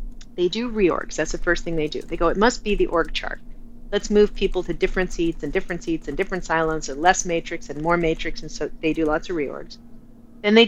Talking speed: 245 wpm